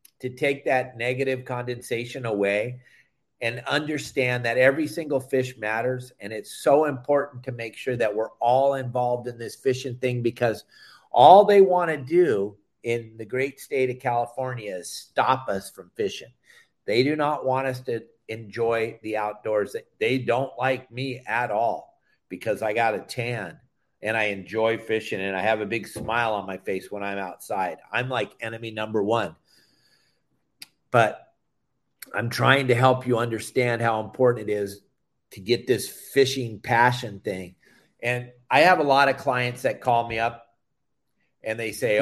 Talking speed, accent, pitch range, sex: 165 wpm, American, 115-135 Hz, male